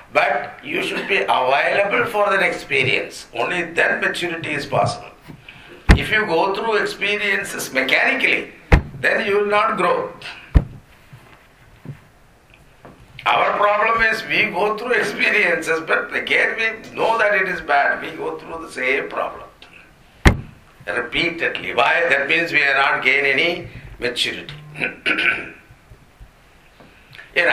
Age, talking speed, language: 50-69, 120 wpm, English